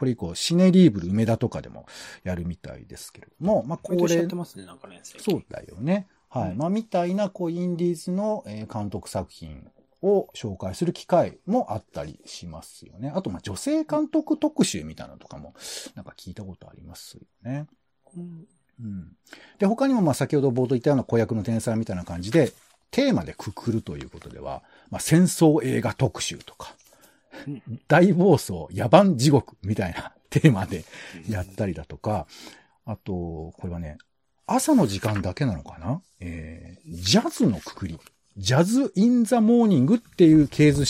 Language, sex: Japanese, male